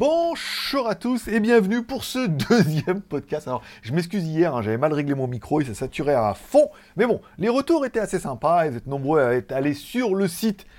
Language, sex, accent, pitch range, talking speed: French, male, French, 140-210 Hz, 220 wpm